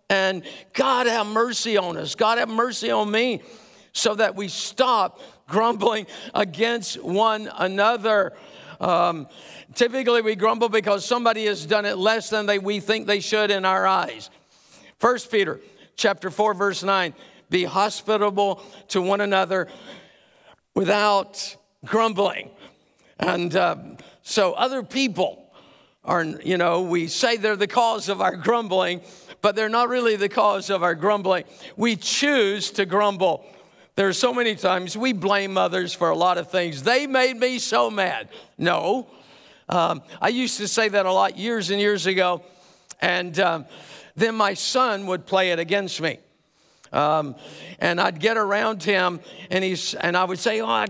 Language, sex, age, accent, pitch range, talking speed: English, male, 50-69, American, 185-225 Hz, 160 wpm